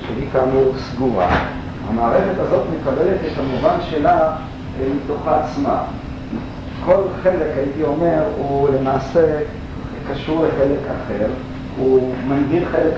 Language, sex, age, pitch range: Hebrew, male, 50-69, 120-155 Hz